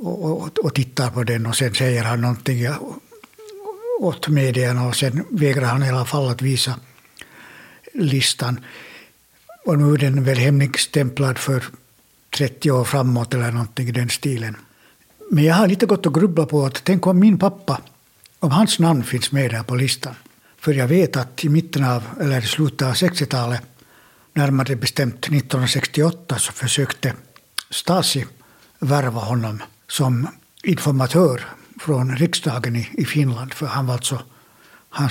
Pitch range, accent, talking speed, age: 125-155 Hz, Finnish, 145 wpm, 60-79